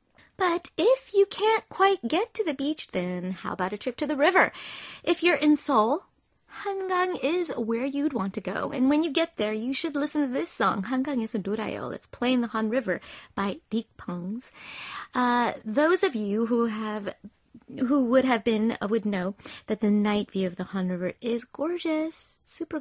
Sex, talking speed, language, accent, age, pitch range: female, 200 wpm, English, American, 30-49, 215-295 Hz